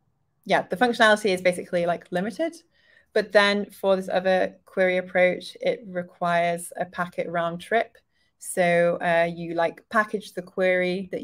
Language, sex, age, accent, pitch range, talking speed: English, female, 20-39, British, 175-190 Hz, 150 wpm